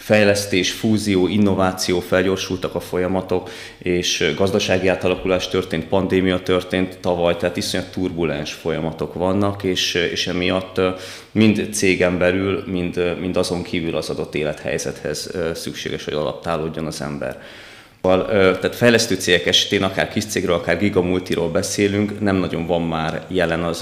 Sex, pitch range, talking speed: male, 85-100 Hz, 130 wpm